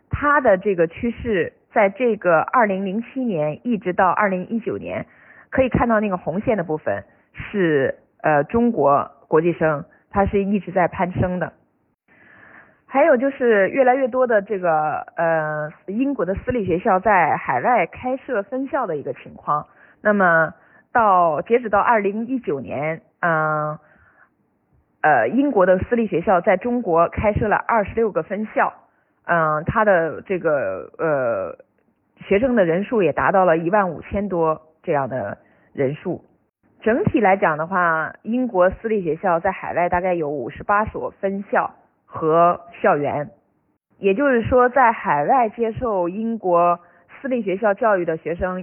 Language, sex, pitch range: Chinese, female, 165-230 Hz